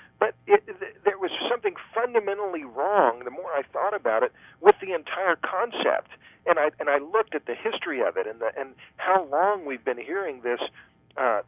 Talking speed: 195 wpm